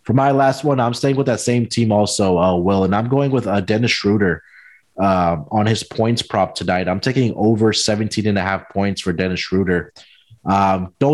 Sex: male